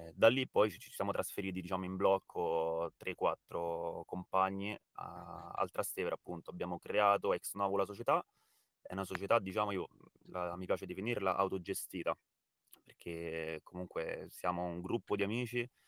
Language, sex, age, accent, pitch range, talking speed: Italian, male, 20-39, native, 85-100 Hz, 145 wpm